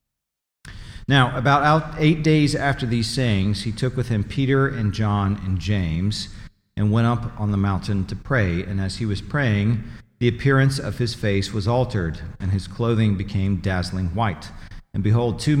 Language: English